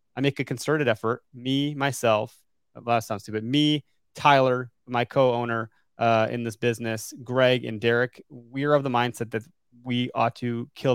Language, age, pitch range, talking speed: English, 30-49, 115-140 Hz, 165 wpm